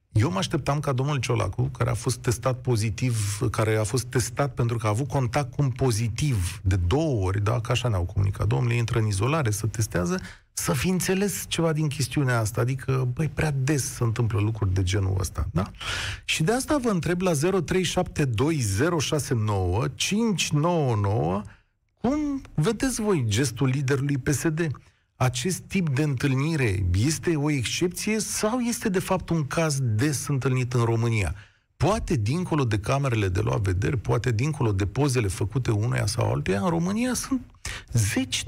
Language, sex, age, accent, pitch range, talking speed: Romanian, male, 40-59, native, 110-175 Hz, 160 wpm